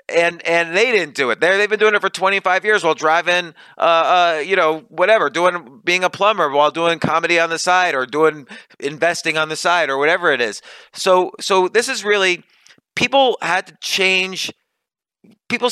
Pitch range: 150-190 Hz